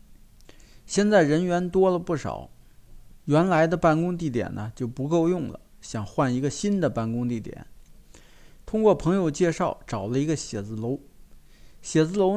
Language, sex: Chinese, male